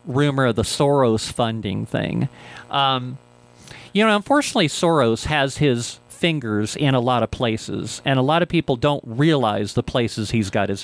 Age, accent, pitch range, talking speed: 50-69, American, 115-155 Hz, 170 wpm